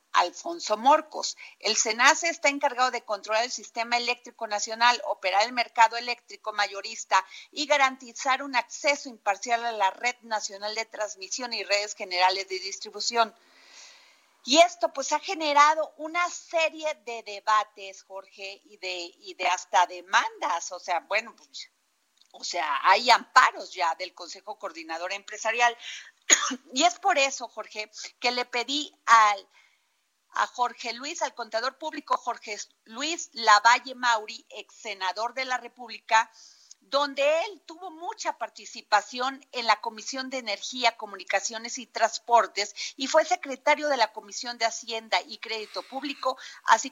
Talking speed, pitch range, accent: 140 wpm, 210-270 Hz, Mexican